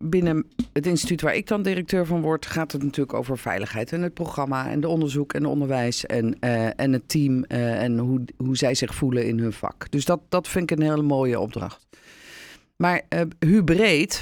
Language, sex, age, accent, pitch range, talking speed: Dutch, female, 50-69, Dutch, 115-150 Hz, 210 wpm